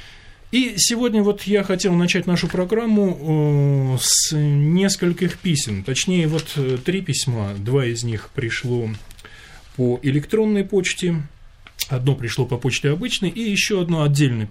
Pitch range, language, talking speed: 125-175 Hz, Russian, 130 wpm